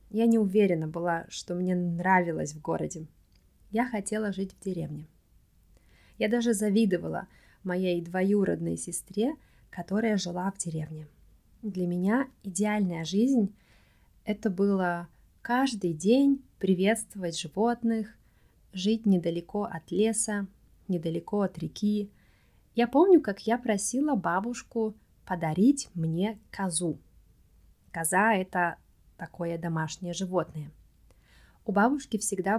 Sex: female